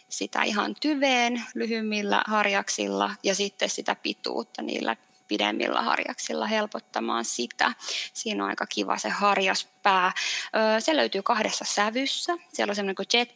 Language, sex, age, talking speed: Finnish, female, 20-39, 130 wpm